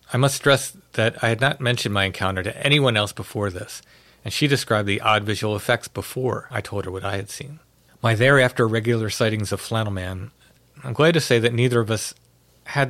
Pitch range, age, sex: 105-130 Hz, 40-59, male